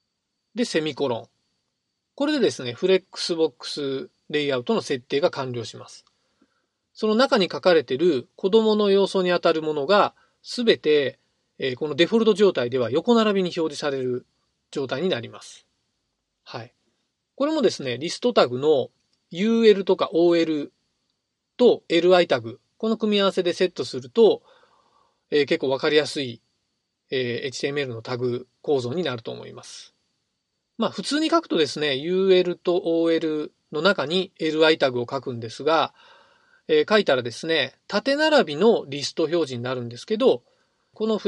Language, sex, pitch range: Japanese, male, 140-225 Hz